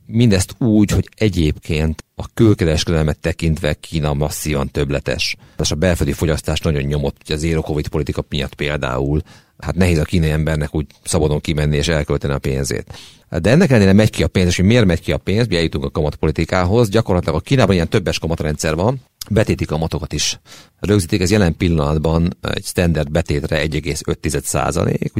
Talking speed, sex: 160 wpm, male